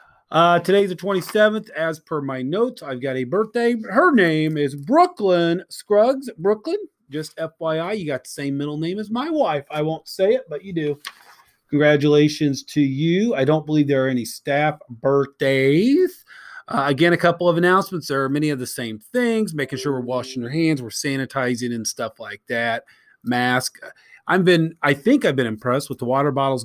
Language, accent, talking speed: English, American, 190 wpm